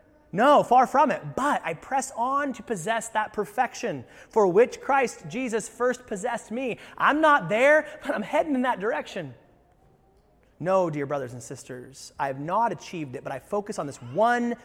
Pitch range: 140-215 Hz